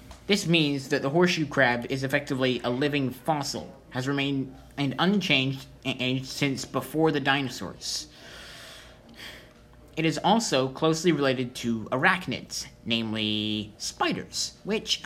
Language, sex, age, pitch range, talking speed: English, male, 20-39, 125-180 Hz, 110 wpm